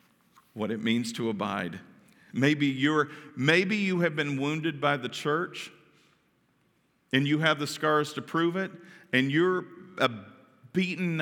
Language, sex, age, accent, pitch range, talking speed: English, male, 50-69, American, 110-145 Hz, 145 wpm